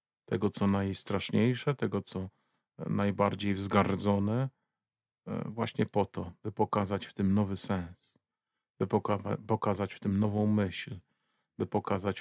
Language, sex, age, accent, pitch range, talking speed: Polish, male, 40-59, native, 95-110 Hz, 120 wpm